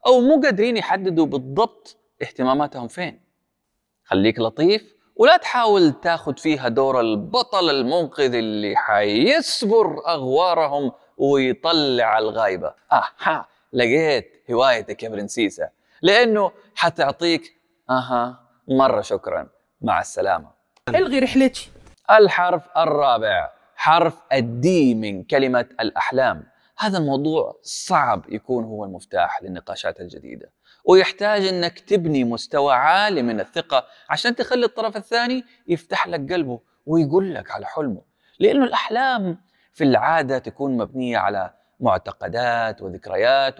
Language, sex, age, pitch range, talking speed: Arabic, male, 20-39, 130-215 Hz, 105 wpm